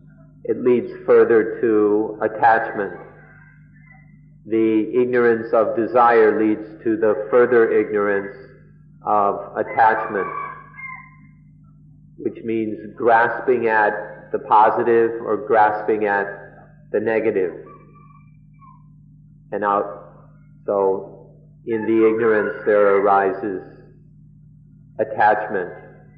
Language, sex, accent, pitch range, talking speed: English, male, American, 110-170 Hz, 85 wpm